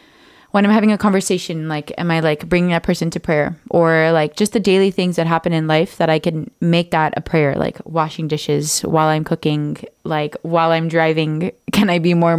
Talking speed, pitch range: 220 wpm, 160-195 Hz